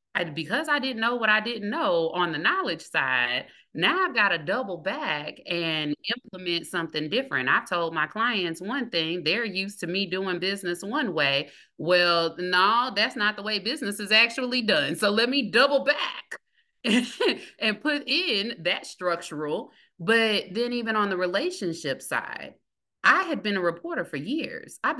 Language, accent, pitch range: English, American, 160-230 Hz